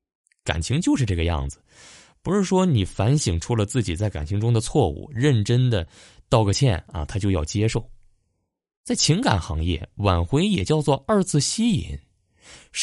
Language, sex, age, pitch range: Chinese, male, 20-39, 90-145 Hz